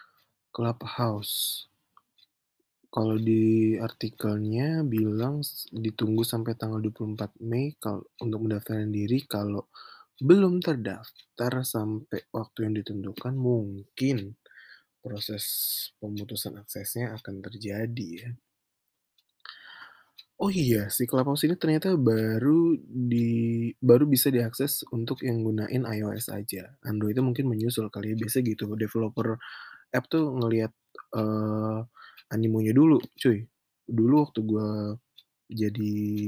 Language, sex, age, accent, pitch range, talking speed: Indonesian, male, 20-39, native, 110-125 Hz, 105 wpm